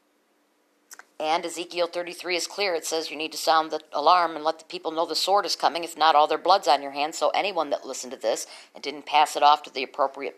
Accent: American